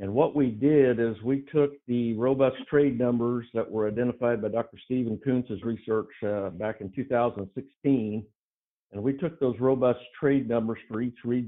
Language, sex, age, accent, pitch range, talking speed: English, male, 50-69, American, 110-130 Hz, 175 wpm